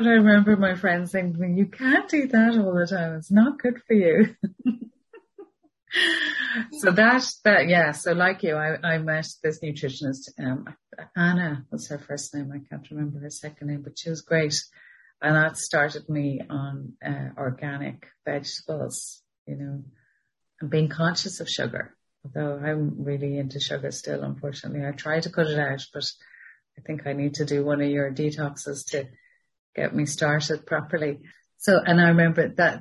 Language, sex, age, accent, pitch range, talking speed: English, female, 30-49, Irish, 140-180 Hz, 175 wpm